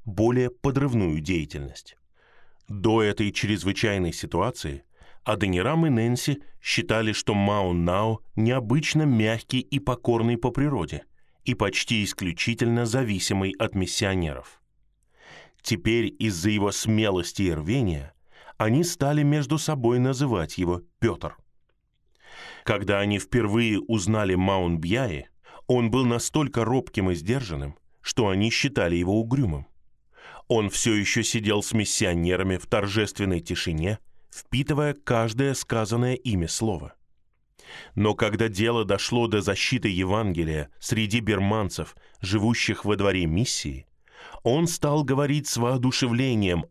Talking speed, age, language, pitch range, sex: 110 wpm, 20-39, Russian, 95-125 Hz, male